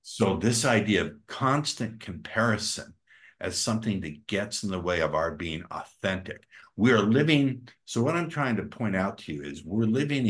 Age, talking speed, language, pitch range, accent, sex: 60-79, 185 wpm, English, 80-110 Hz, American, male